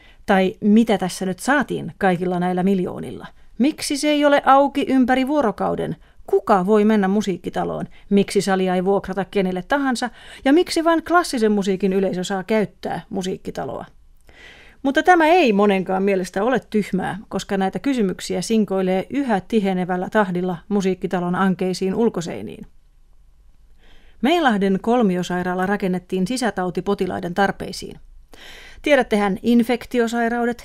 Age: 30-49